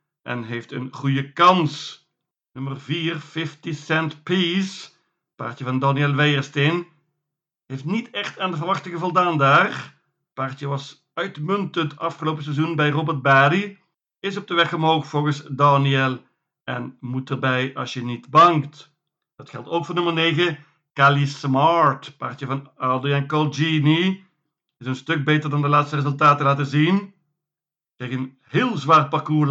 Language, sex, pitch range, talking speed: Dutch, male, 140-170 Hz, 145 wpm